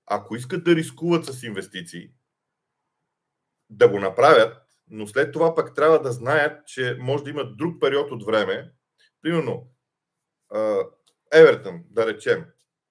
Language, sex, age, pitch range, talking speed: Bulgarian, male, 40-59, 120-170 Hz, 130 wpm